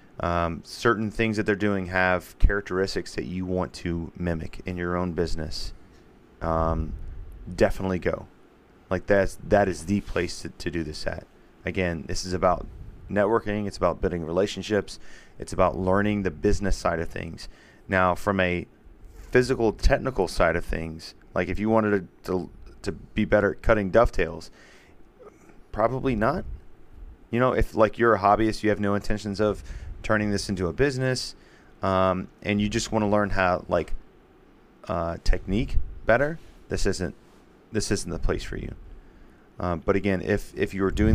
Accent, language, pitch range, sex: American, English, 90-105 Hz, male